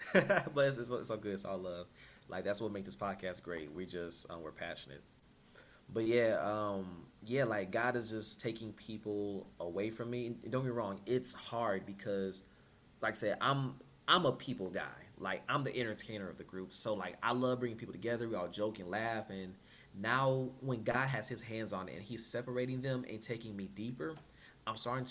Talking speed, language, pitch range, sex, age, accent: 210 wpm, English, 100-120 Hz, male, 20-39, American